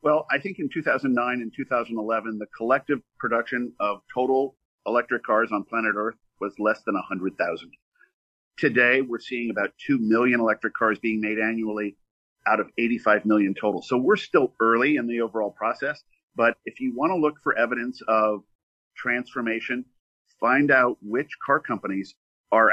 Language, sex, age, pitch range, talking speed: English, male, 50-69, 110-125 Hz, 160 wpm